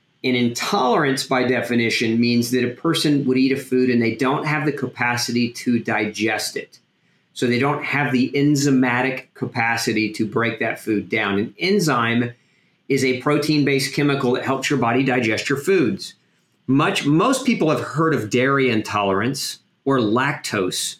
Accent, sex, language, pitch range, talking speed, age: American, male, English, 120-145 Hz, 160 wpm, 40-59